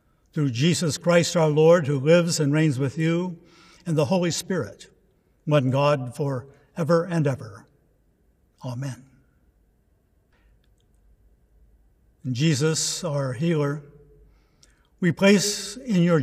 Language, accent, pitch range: English, American, 140-170 Hz